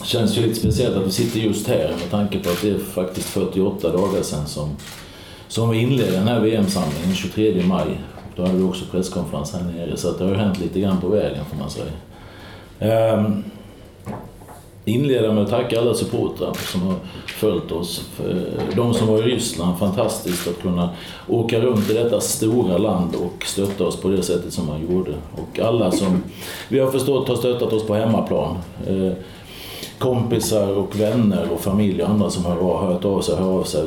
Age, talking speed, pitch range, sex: 40-59, 190 wpm, 90-110 Hz, male